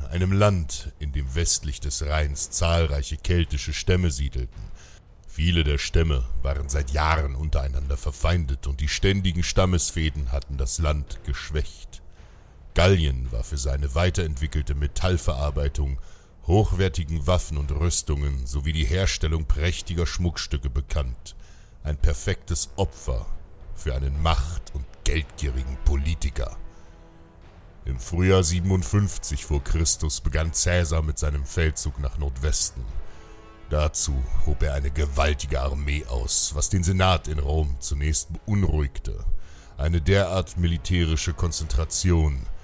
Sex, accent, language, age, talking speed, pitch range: male, German, German, 60-79, 115 wpm, 70-85 Hz